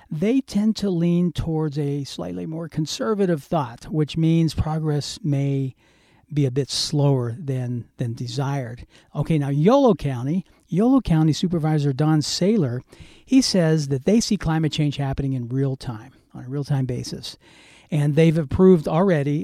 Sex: male